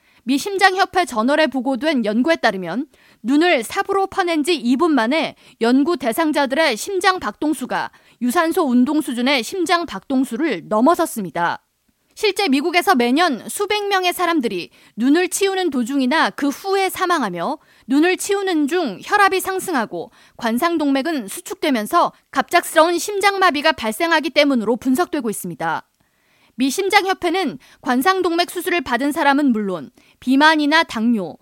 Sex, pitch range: female, 245-345 Hz